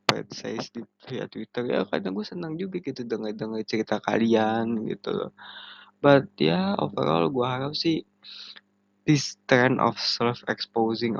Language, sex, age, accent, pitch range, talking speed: Indonesian, male, 20-39, native, 110-130 Hz, 150 wpm